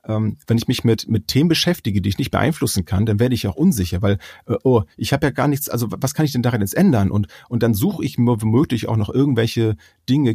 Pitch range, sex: 100-120 Hz, male